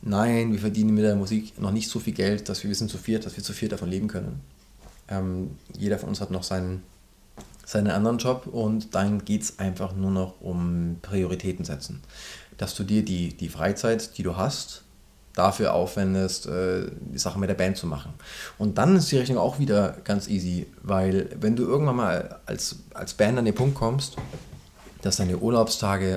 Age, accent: 20-39, German